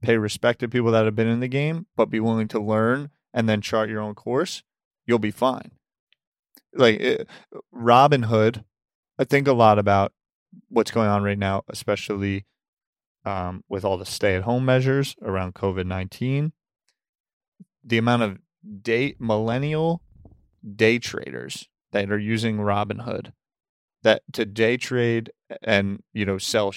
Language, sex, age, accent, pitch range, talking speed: English, male, 30-49, American, 105-130 Hz, 150 wpm